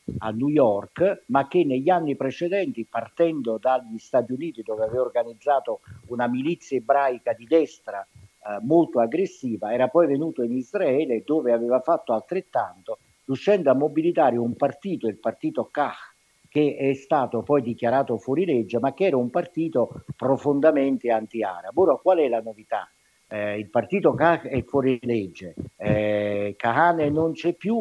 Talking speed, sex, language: 155 wpm, male, Italian